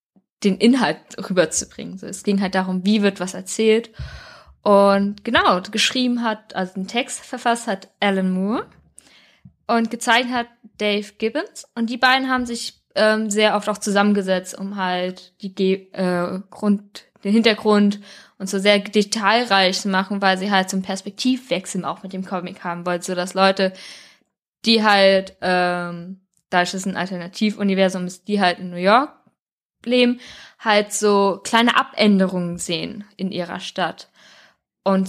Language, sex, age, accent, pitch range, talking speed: German, female, 10-29, German, 190-225 Hz, 150 wpm